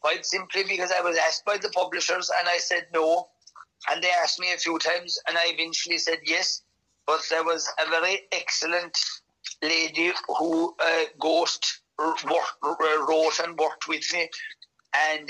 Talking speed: 160 wpm